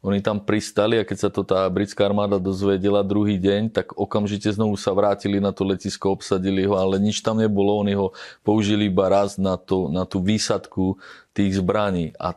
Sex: male